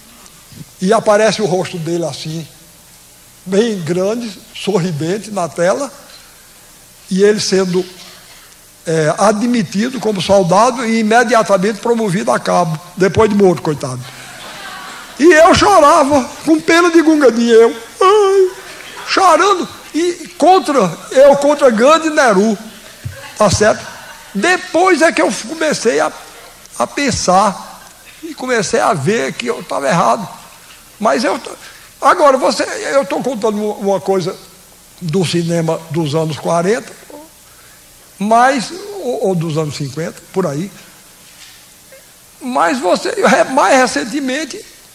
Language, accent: Portuguese, Brazilian